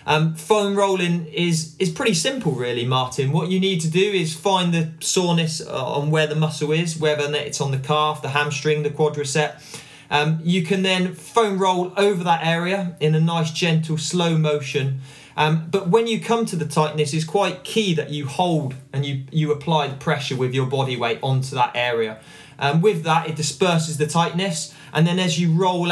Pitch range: 140-170 Hz